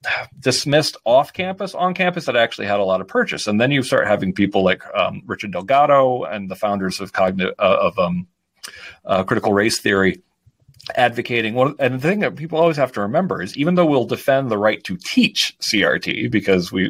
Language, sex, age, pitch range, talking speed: English, male, 40-59, 105-165 Hz, 200 wpm